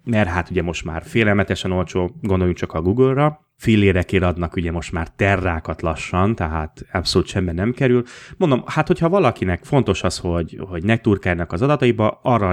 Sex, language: male, Hungarian